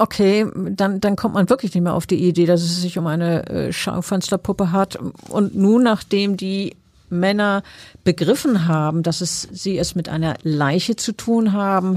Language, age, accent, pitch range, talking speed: German, 50-69, German, 170-205 Hz, 175 wpm